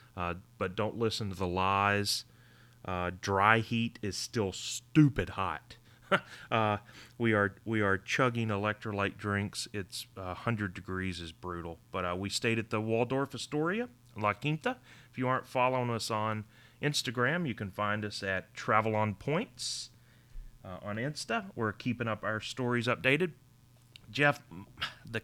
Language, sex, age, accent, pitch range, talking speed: English, male, 30-49, American, 95-125 Hz, 150 wpm